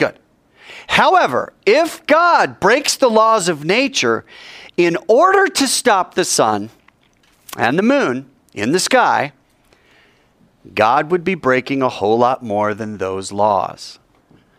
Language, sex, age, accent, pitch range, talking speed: English, male, 40-59, American, 105-155 Hz, 130 wpm